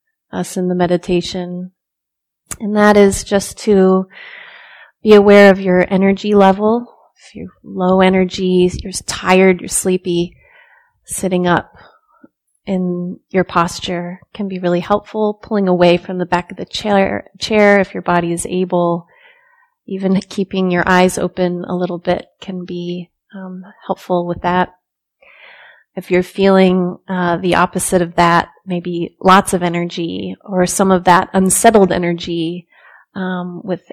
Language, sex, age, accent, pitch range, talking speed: English, female, 30-49, American, 180-195 Hz, 140 wpm